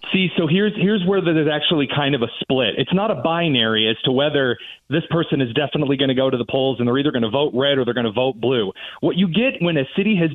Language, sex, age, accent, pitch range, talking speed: English, male, 30-49, American, 135-175 Hz, 280 wpm